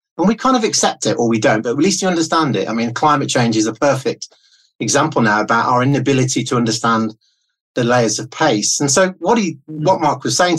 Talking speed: 230 wpm